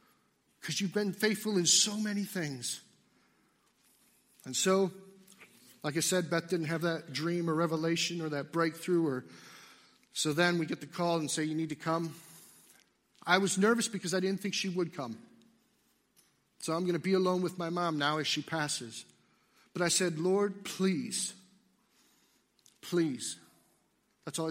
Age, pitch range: 50-69, 155-205 Hz